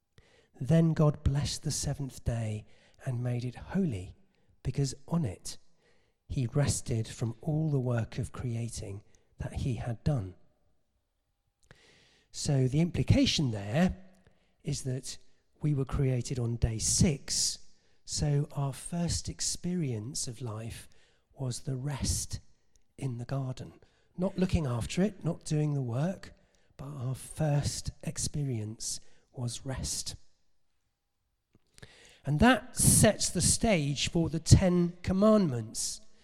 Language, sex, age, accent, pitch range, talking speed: English, male, 40-59, British, 125-165 Hz, 120 wpm